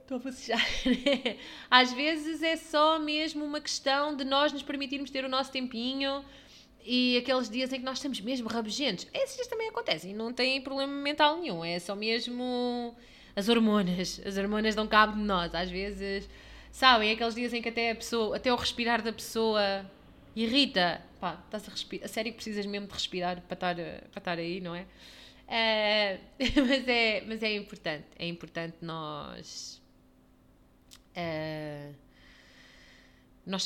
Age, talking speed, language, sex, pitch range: 20-39, 160 wpm, Portuguese, female, 190-265 Hz